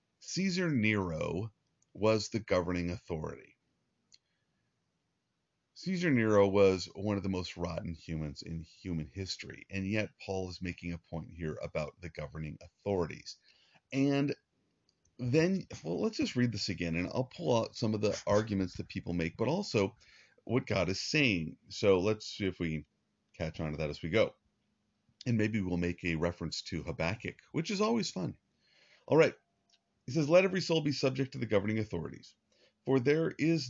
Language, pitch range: English, 95-140 Hz